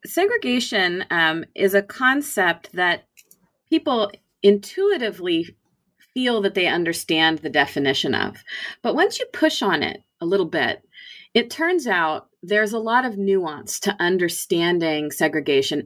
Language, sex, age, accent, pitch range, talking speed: English, female, 30-49, American, 155-230 Hz, 130 wpm